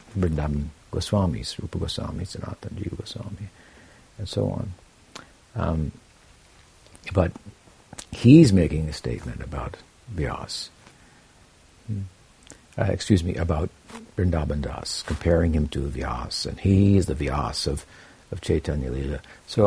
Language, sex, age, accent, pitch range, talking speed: English, male, 60-79, American, 85-105 Hz, 120 wpm